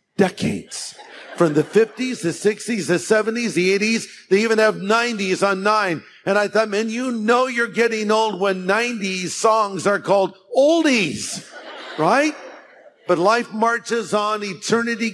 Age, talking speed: 50-69, 145 wpm